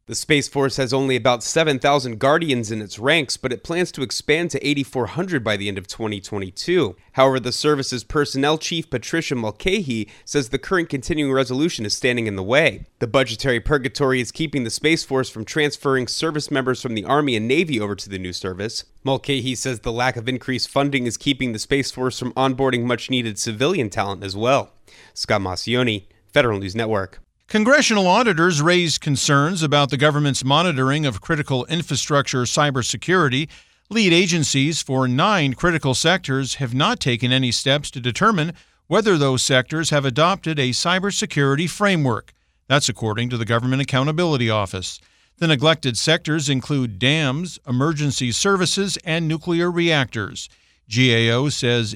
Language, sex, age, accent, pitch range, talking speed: English, male, 30-49, American, 120-155 Hz, 160 wpm